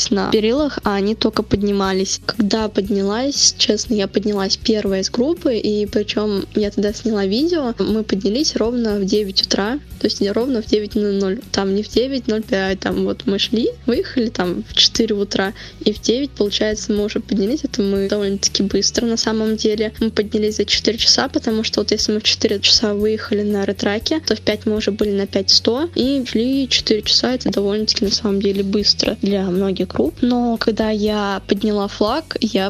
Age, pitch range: 10-29, 200-225 Hz